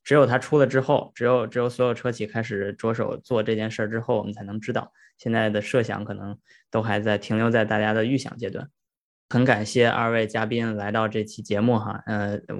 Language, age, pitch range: Chinese, 20-39, 105-120 Hz